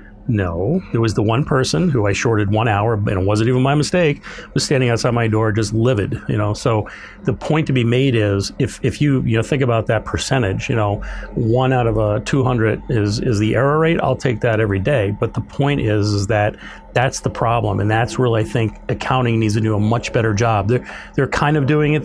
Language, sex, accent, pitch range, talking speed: English, male, American, 110-130 Hz, 245 wpm